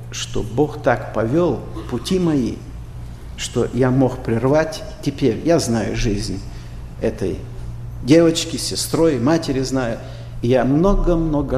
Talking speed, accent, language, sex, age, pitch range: 110 wpm, native, Russian, male, 50-69, 120-160 Hz